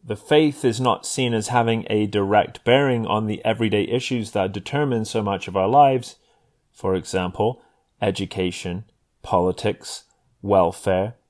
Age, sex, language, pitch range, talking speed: 30-49, male, English, 95-115 Hz, 140 wpm